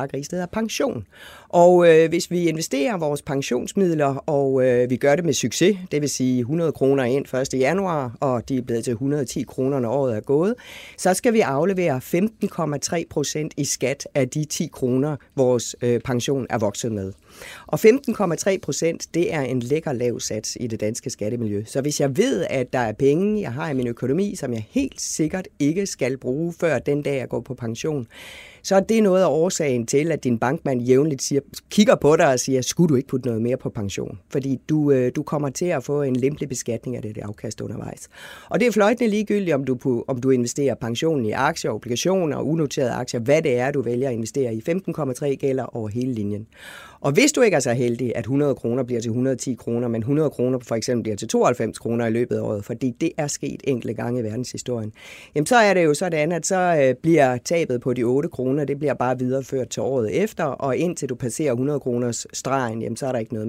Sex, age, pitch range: female, 30-49, 125-165 Hz